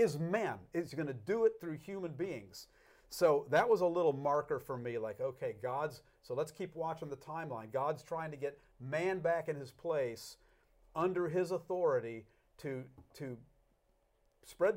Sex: male